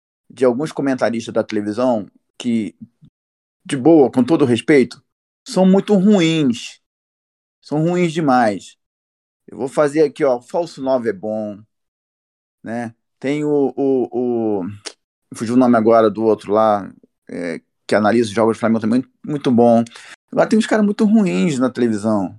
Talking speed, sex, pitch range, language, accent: 145 wpm, male, 125-190 Hz, Portuguese, Brazilian